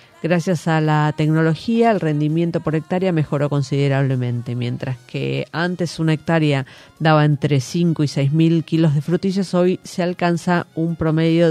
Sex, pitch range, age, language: female, 150-185 Hz, 40-59, Spanish